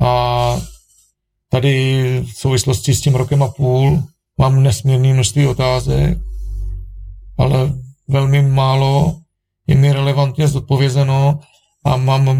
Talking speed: 105 wpm